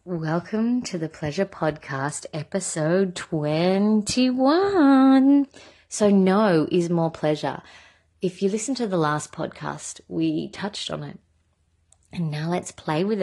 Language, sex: English, female